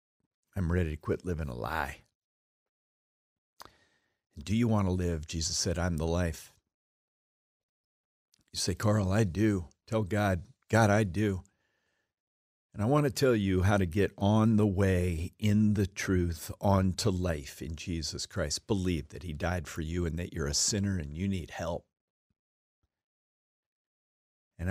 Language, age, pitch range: English, 50-69, 85-110 Hz